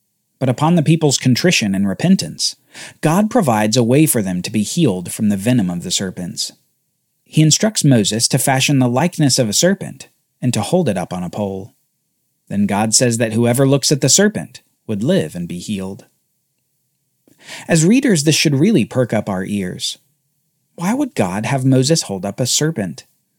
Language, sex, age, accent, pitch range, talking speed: English, male, 40-59, American, 110-170 Hz, 185 wpm